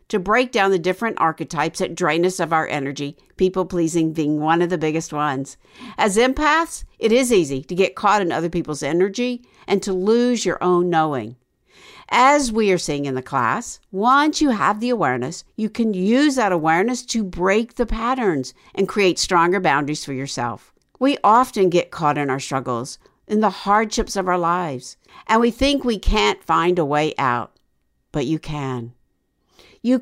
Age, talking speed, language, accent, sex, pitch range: 60-79, 180 wpm, English, American, female, 155-220 Hz